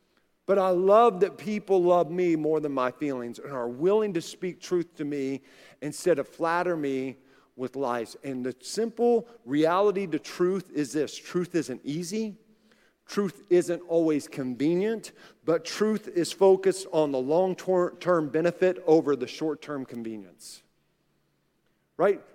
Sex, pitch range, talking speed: male, 155-230 Hz, 140 wpm